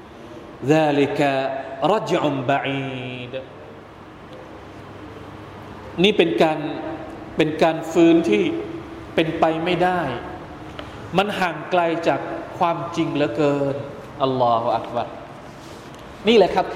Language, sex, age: Thai, male, 20-39